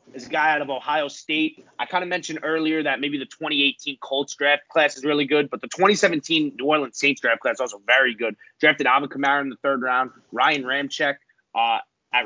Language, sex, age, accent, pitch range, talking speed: English, male, 30-49, American, 135-155 Hz, 215 wpm